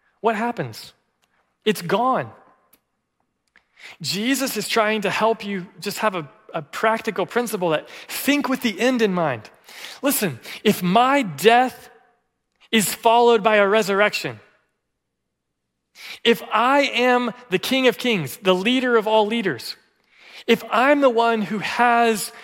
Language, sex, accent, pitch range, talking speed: English, male, American, 140-220 Hz, 135 wpm